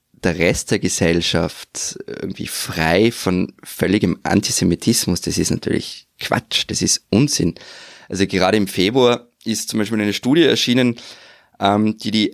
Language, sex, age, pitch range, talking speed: German, male, 20-39, 100-125 Hz, 140 wpm